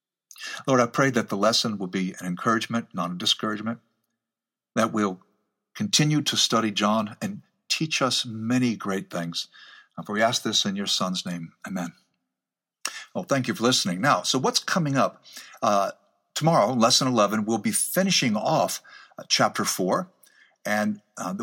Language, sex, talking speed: English, male, 160 wpm